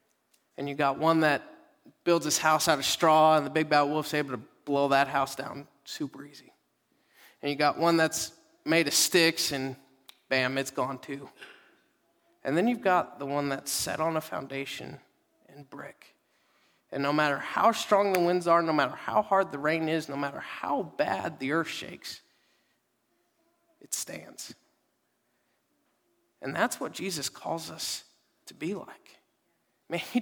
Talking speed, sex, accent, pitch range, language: 170 wpm, male, American, 145-185 Hz, English